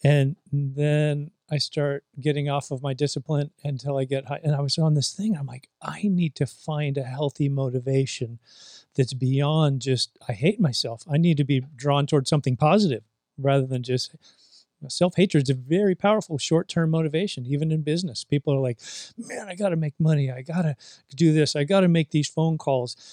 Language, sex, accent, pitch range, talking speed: English, male, American, 135-160 Hz, 195 wpm